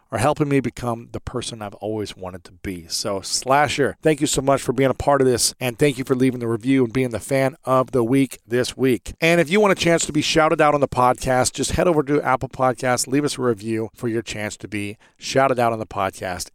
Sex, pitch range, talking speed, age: male, 110-145 Hz, 260 wpm, 40-59